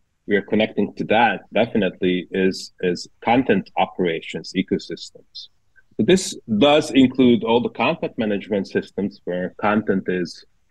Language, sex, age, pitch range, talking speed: English, male, 30-49, 95-120 Hz, 130 wpm